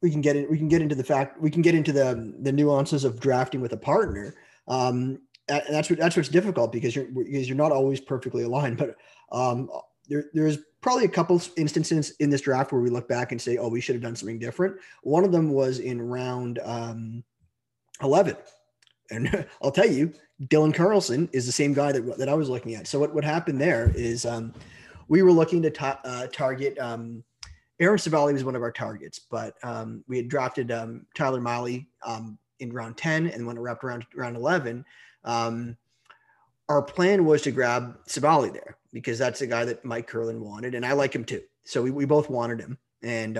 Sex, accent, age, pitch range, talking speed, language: male, American, 30-49, 120-150 Hz, 215 wpm, English